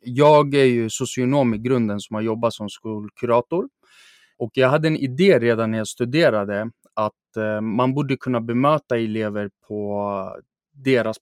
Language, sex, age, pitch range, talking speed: Swedish, male, 20-39, 110-130 Hz, 150 wpm